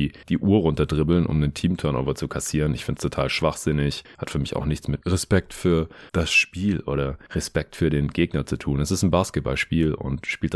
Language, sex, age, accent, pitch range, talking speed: German, male, 30-49, German, 70-90 Hz, 205 wpm